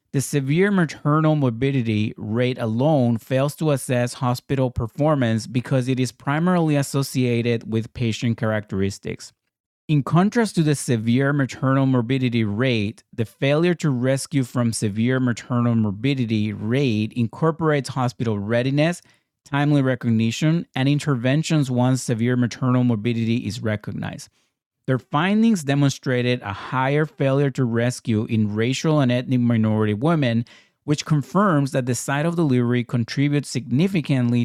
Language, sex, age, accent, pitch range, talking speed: English, male, 30-49, American, 115-145 Hz, 125 wpm